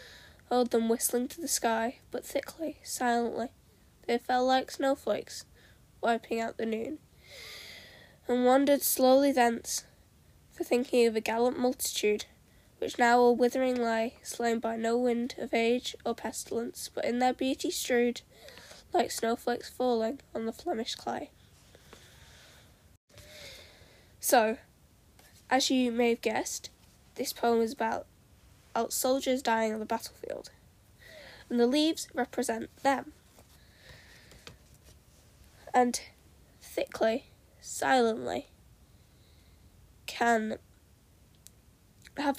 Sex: female